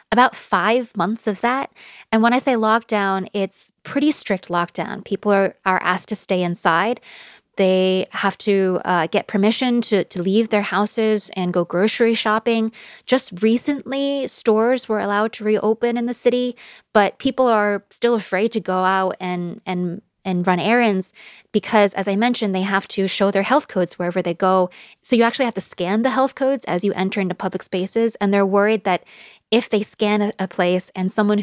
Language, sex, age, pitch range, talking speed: English, female, 20-39, 185-220 Hz, 190 wpm